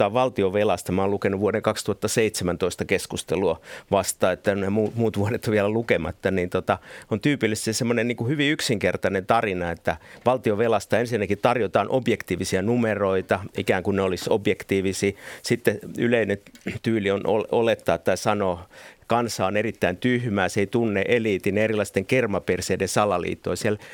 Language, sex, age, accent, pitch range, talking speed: Finnish, male, 50-69, native, 100-120 Hz, 140 wpm